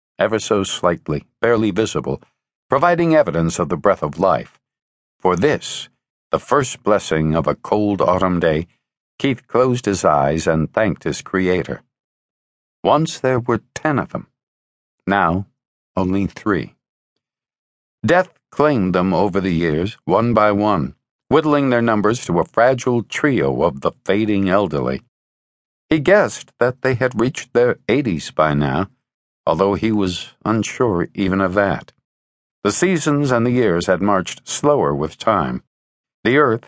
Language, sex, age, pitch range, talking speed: English, male, 60-79, 85-120 Hz, 145 wpm